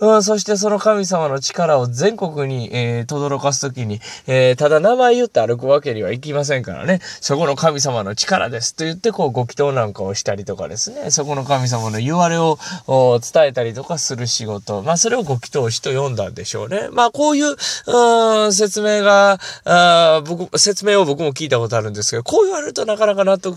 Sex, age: male, 20-39